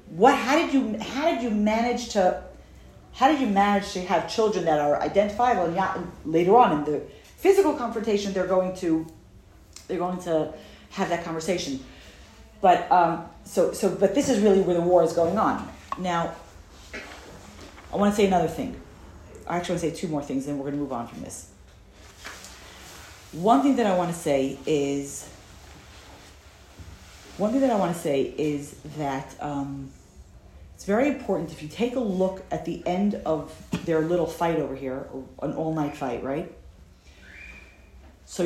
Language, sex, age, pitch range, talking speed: English, female, 40-59, 145-210 Hz, 180 wpm